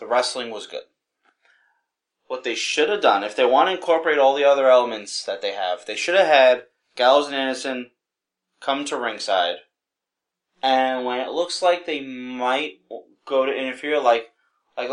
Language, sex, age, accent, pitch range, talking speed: English, male, 20-39, American, 115-180 Hz, 175 wpm